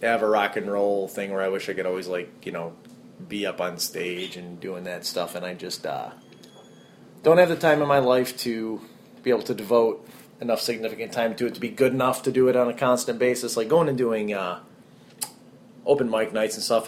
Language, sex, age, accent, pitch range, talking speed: English, male, 30-49, American, 105-130 Hz, 230 wpm